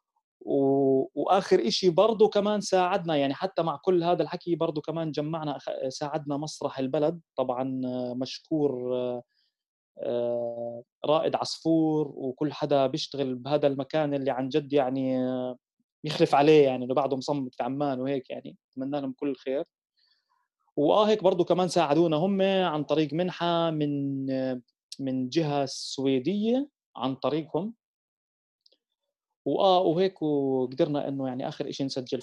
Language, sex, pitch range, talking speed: Arabic, male, 135-185 Hz, 125 wpm